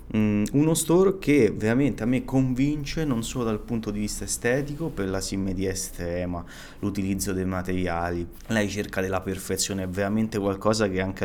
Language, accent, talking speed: Italian, native, 160 wpm